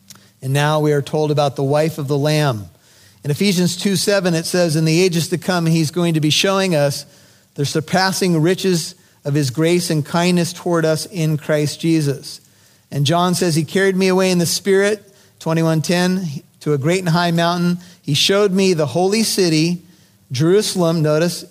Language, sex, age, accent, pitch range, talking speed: English, male, 40-59, American, 155-190 Hz, 190 wpm